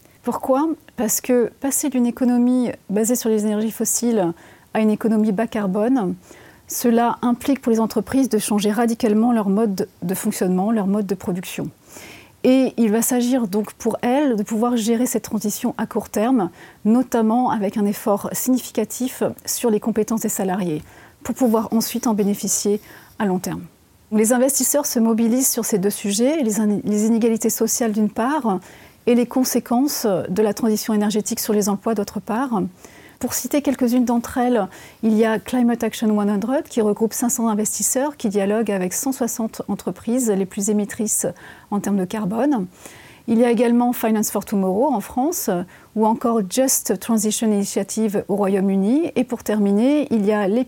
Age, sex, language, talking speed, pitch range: 30-49, female, French, 165 wpm, 210-245 Hz